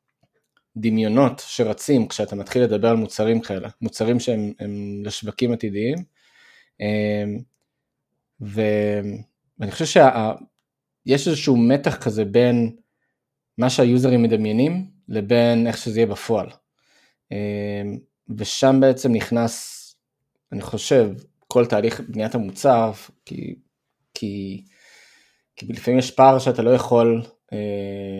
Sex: male